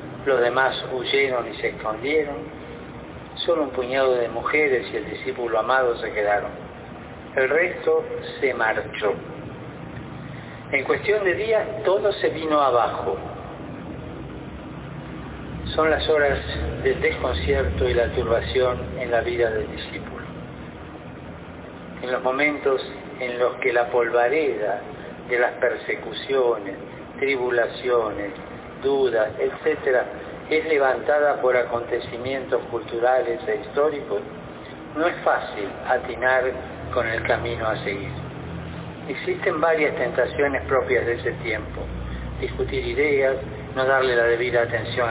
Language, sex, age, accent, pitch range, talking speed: Spanish, male, 50-69, Argentinian, 120-150 Hz, 115 wpm